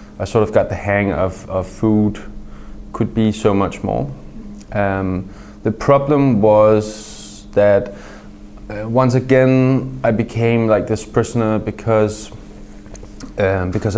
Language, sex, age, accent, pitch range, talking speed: English, male, 20-39, Danish, 100-110 Hz, 130 wpm